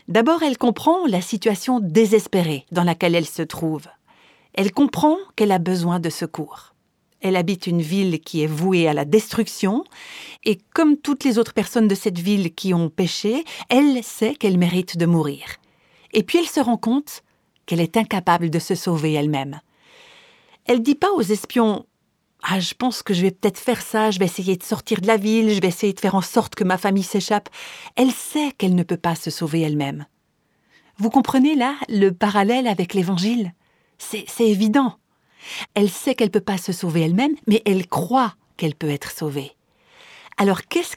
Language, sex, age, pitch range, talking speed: French, female, 50-69, 175-235 Hz, 195 wpm